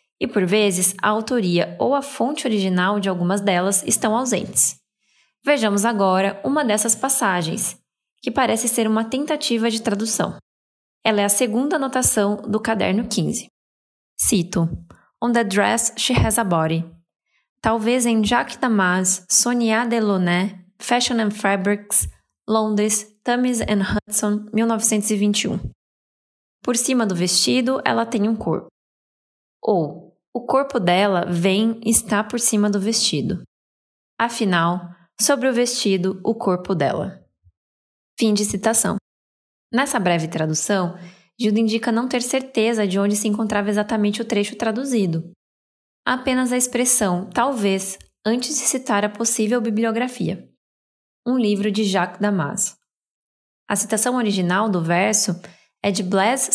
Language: Portuguese